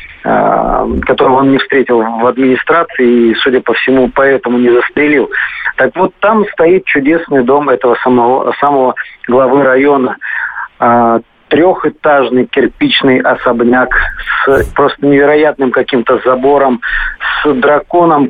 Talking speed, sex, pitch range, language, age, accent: 110 wpm, male, 125-165 Hz, Russian, 40-59, native